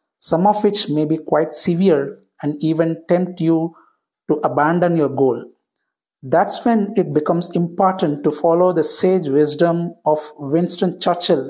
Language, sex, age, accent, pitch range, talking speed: English, male, 60-79, Indian, 155-205 Hz, 145 wpm